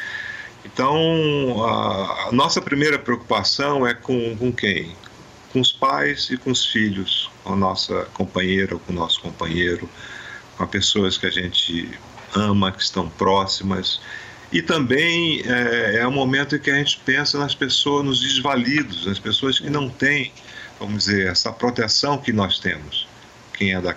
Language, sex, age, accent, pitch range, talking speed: English, male, 50-69, Brazilian, 95-130 Hz, 165 wpm